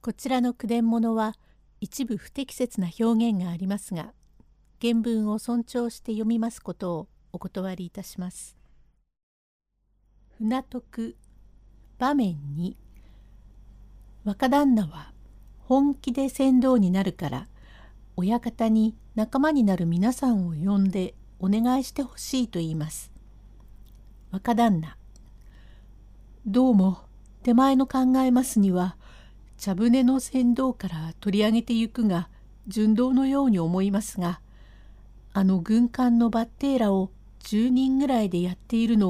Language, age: Japanese, 60-79